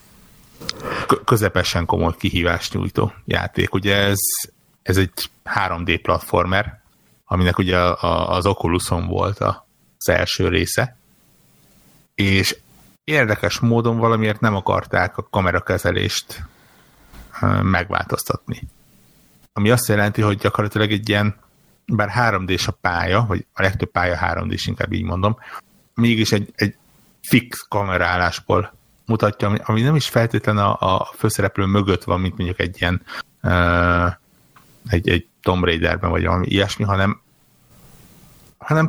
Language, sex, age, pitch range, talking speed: Hungarian, male, 60-79, 90-110 Hz, 115 wpm